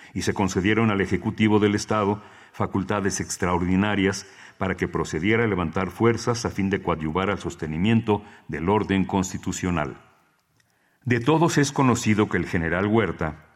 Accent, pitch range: Mexican, 90-110 Hz